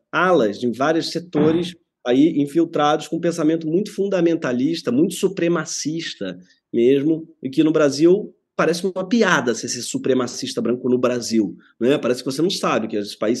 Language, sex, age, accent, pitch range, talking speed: Portuguese, male, 20-39, Brazilian, 120-165 Hz, 155 wpm